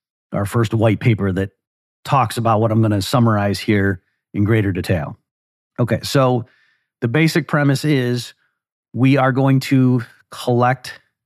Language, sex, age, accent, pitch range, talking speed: English, male, 40-59, American, 110-130 Hz, 145 wpm